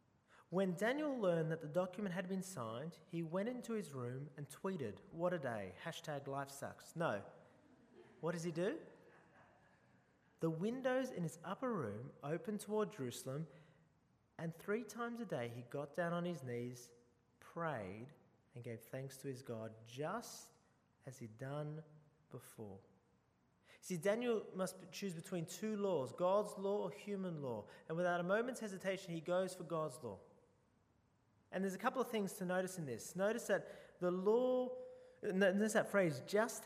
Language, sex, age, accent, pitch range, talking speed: English, male, 30-49, Australian, 140-200 Hz, 165 wpm